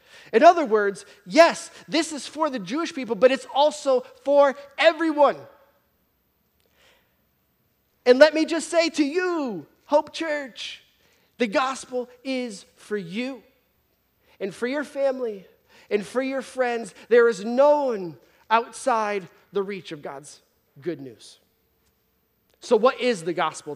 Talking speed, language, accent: 135 wpm, English, American